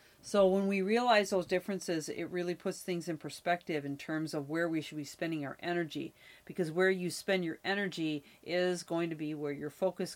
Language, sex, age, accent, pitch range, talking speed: English, female, 40-59, American, 155-185 Hz, 205 wpm